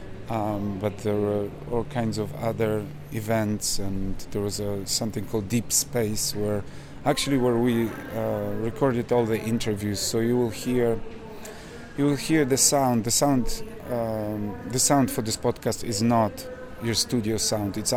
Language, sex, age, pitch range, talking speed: English, male, 30-49, 105-120 Hz, 165 wpm